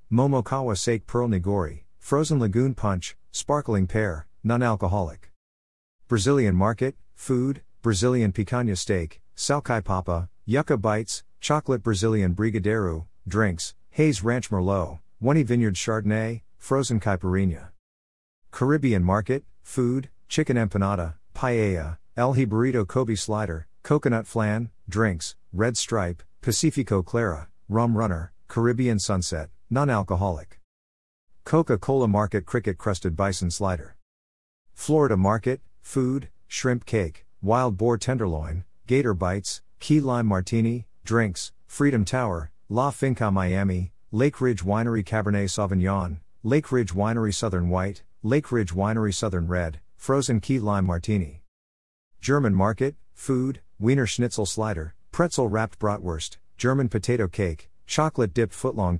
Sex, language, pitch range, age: male, English, 90-120 Hz, 50-69